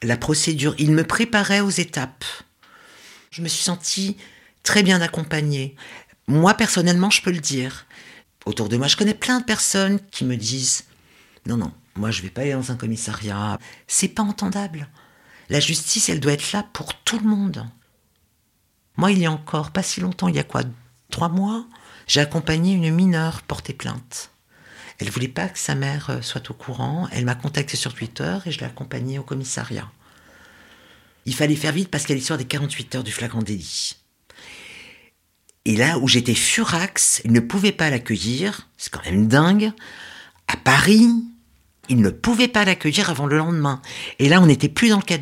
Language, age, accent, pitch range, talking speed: French, 50-69, French, 125-185 Hz, 190 wpm